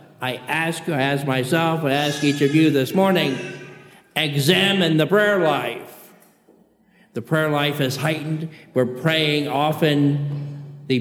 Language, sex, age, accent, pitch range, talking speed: English, male, 50-69, American, 135-160 Hz, 125 wpm